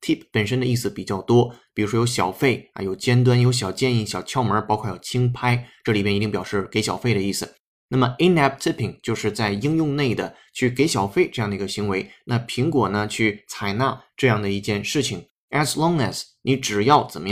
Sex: male